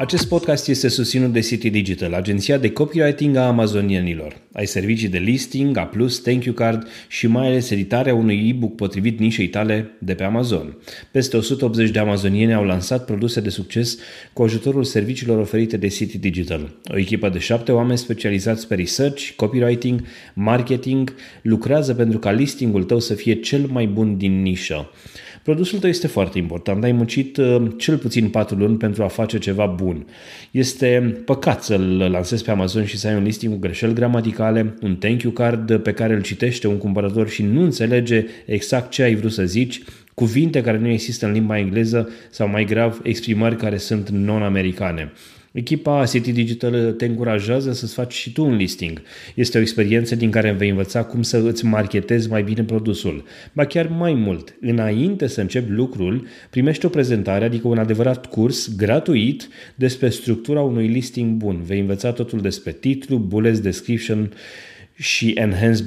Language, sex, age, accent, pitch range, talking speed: Romanian, male, 30-49, native, 105-125 Hz, 175 wpm